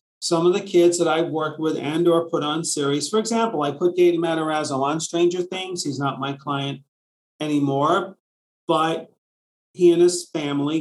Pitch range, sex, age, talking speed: 145-170 Hz, male, 40-59, 180 wpm